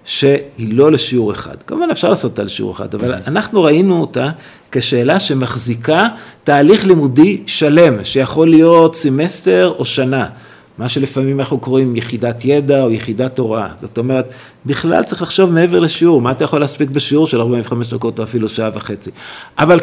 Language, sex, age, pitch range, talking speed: Hebrew, male, 50-69, 115-160 Hz, 160 wpm